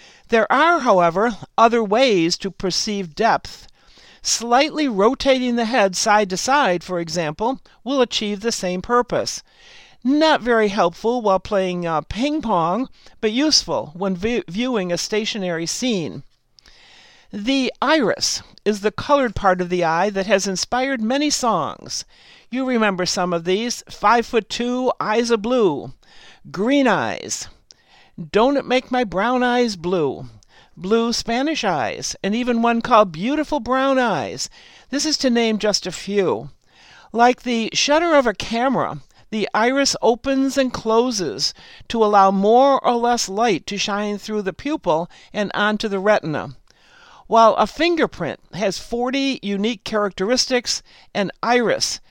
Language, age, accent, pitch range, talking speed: English, 60-79, American, 195-250 Hz, 145 wpm